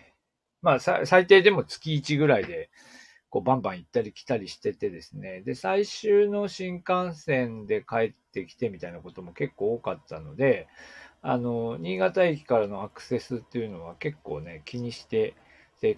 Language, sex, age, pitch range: Japanese, male, 40-59, 120-185 Hz